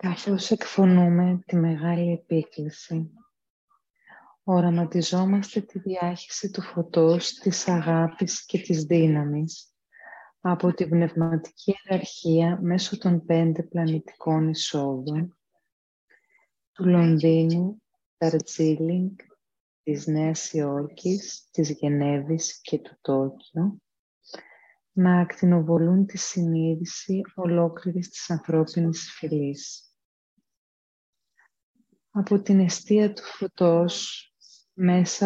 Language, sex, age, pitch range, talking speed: Greek, female, 30-49, 160-185 Hz, 85 wpm